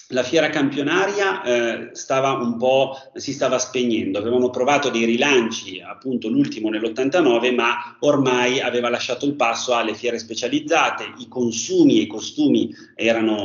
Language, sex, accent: Italian, male, native